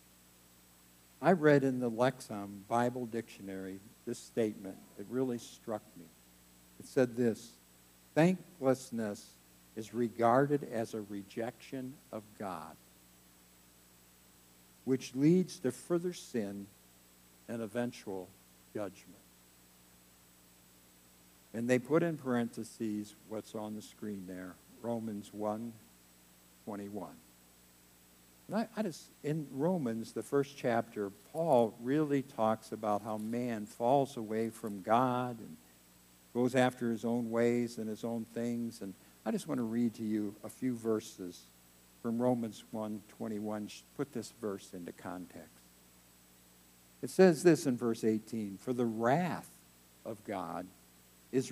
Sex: male